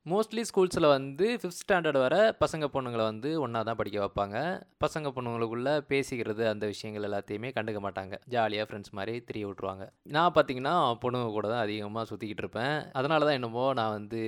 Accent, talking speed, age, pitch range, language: native, 165 wpm, 20-39, 110-155 Hz, Tamil